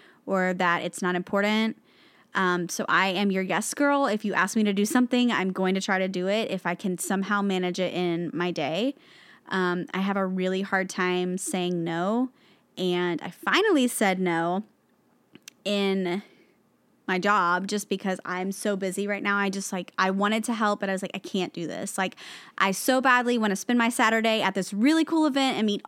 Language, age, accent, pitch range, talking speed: English, 20-39, American, 185-220 Hz, 210 wpm